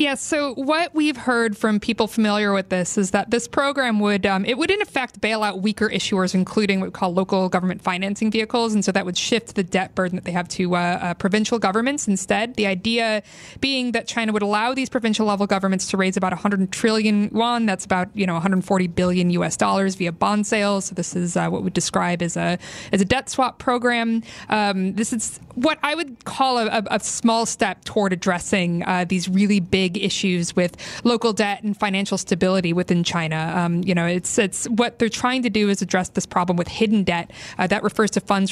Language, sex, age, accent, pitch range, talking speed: English, female, 20-39, American, 185-225 Hz, 220 wpm